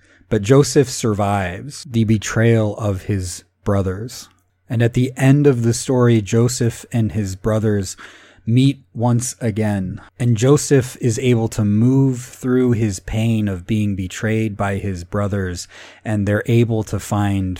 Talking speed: 145 wpm